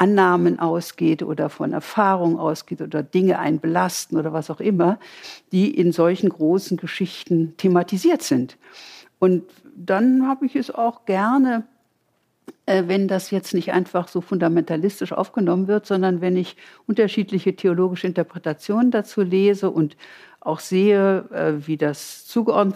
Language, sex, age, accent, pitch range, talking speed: German, female, 60-79, German, 160-200 Hz, 130 wpm